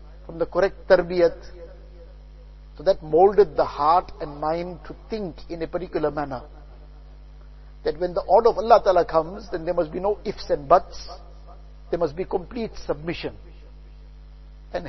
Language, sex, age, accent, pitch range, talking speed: English, male, 50-69, Indian, 155-190 Hz, 155 wpm